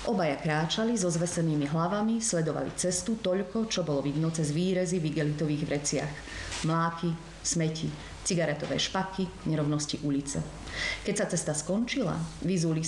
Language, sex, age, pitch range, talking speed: Slovak, female, 30-49, 145-180 Hz, 125 wpm